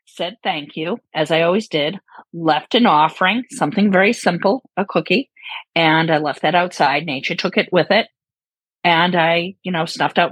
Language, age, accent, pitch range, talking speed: English, 40-59, American, 155-215 Hz, 180 wpm